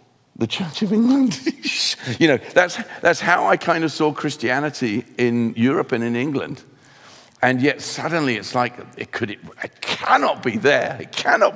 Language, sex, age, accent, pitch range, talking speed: English, male, 50-69, British, 105-130 Hz, 165 wpm